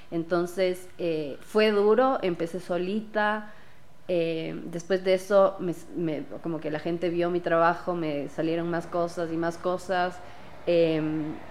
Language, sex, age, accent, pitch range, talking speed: Spanish, female, 20-39, Mexican, 160-185 Hz, 140 wpm